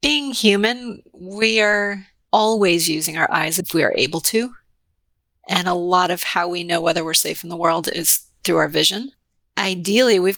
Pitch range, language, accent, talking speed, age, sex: 175-220 Hz, English, American, 185 wpm, 30-49, female